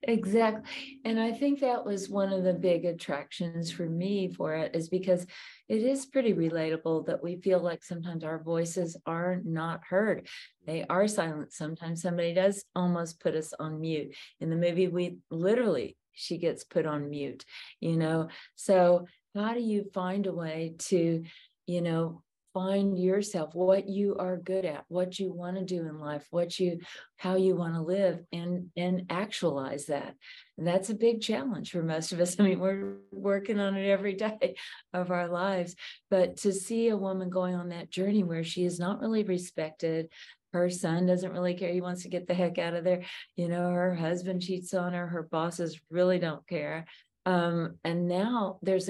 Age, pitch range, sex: 40-59, 170-190 Hz, female